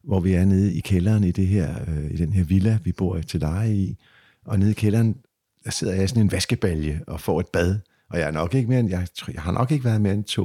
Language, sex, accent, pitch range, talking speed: Danish, male, native, 90-115 Hz, 280 wpm